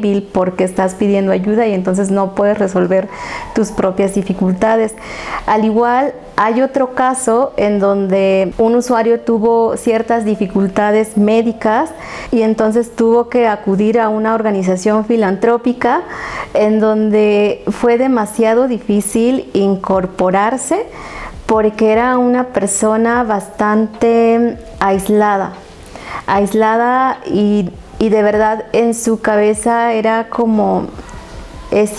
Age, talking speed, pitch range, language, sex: 30-49, 105 wpm, 205-235 Hz, Spanish, female